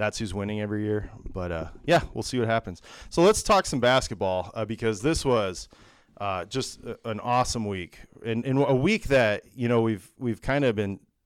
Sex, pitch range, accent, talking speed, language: male, 100-120 Hz, American, 210 wpm, English